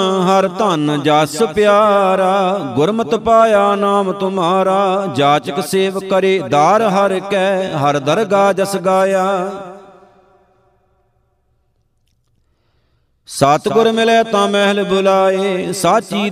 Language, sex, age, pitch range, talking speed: Punjabi, male, 50-69, 190-200 Hz, 85 wpm